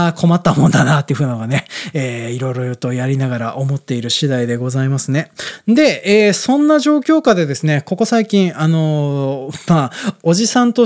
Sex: male